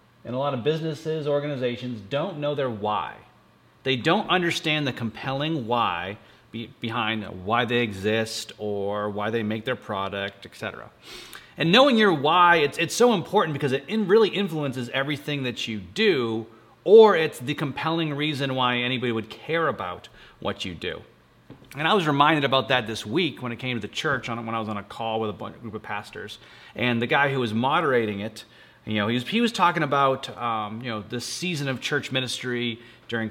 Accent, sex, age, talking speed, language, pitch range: American, male, 30-49, 190 wpm, English, 115-150 Hz